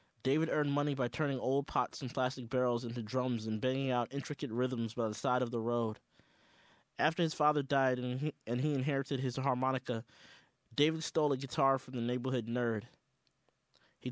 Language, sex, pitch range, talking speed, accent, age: English, male, 125-150 Hz, 180 wpm, American, 20-39